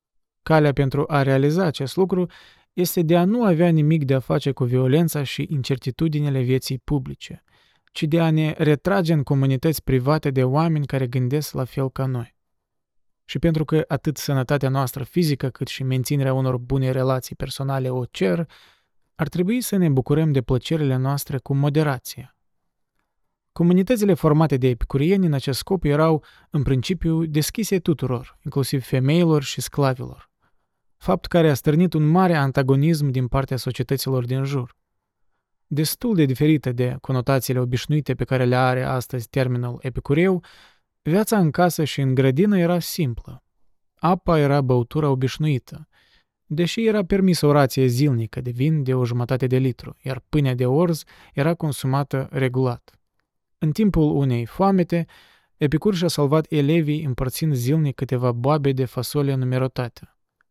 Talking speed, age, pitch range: 150 wpm, 20-39, 130-160 Hz